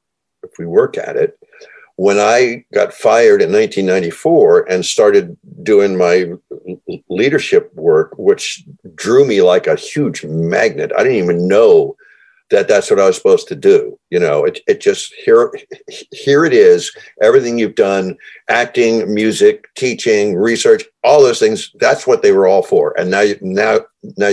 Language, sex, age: English, male, 50-69